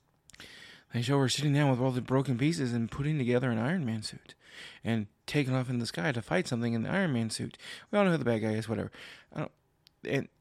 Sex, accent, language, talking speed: male, American, English, 250 wpm